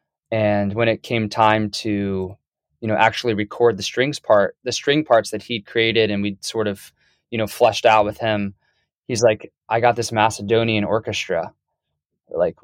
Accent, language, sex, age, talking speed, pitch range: American, English, male, 20-39, 175 wpm, 100-115 Hz